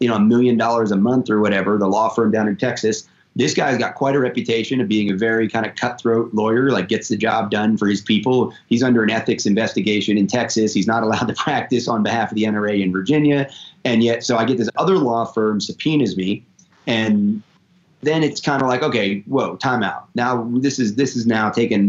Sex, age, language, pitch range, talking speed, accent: male, 30-49, English, 105-130 Hz, 230 wpm, American